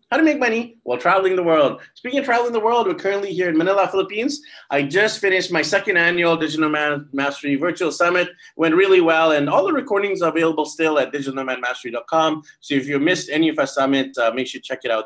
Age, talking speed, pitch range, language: 30-49, 230 wpm, 140-205 Hz, English